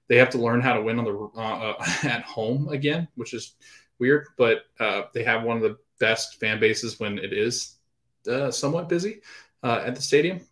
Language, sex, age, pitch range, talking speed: English, male, 20-39, 105-140 Hz, 205 wpm